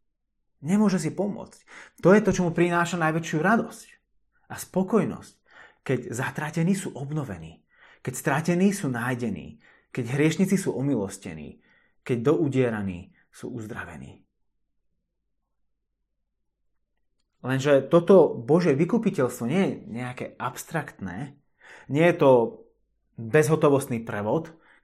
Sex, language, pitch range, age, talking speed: male, Slovak, 125-165 Hz, 30-49, 100 wpm